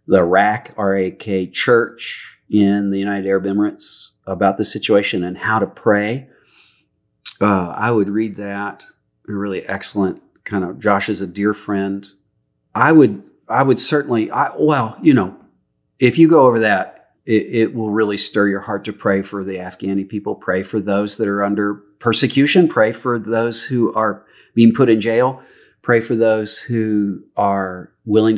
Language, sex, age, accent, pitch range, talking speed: English, male, 40-59, American, 100-130 Hz, 175 wpm